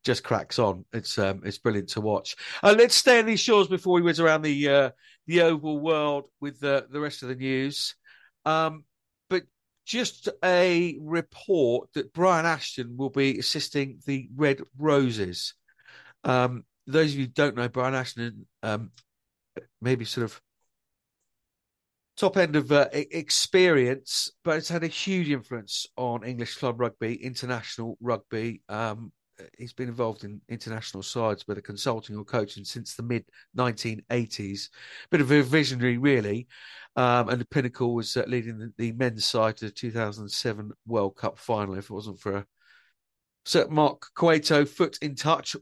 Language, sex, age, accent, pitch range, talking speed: English, male, 50-69, British, 115-150 Hz, 160 wpm